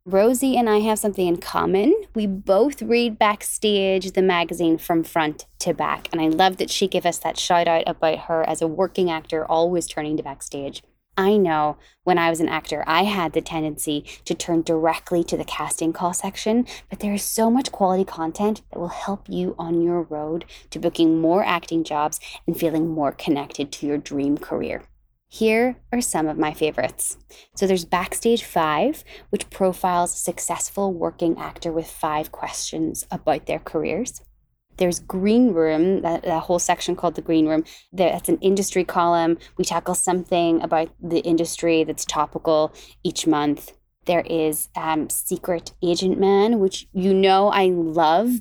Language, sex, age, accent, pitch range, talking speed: English, female, 20-39, American, 165-200 Hz, 175 wpm